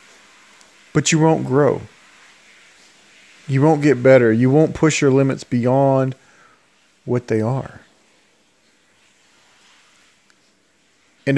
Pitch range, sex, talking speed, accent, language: 120-140 Hz, male, 95 wpm, American, English